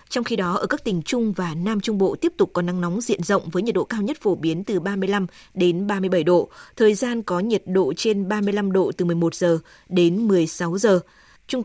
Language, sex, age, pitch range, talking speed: Vietnamese, female, 20-39, 180-220 Hz, 230 wpm